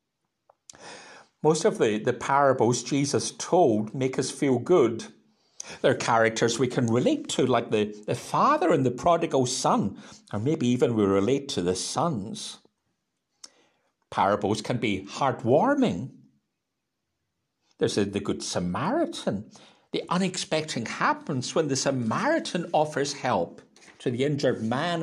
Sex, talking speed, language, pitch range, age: male, 125 wpm, English, 125-210 Hz, 60-79